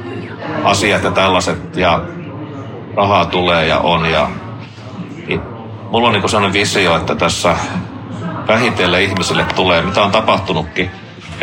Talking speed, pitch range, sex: 120 wpm, 85-100 Hz, male